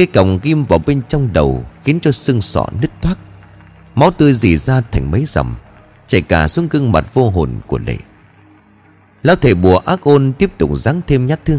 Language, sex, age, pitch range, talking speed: Vietnamese, male, 30-49, 90-140 Hz, 205 wpm